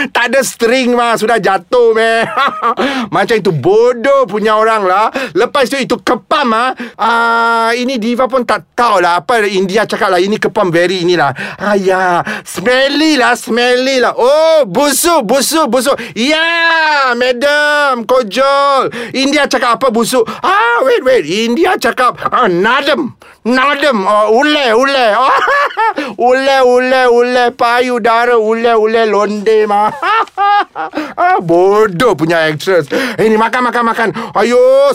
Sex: male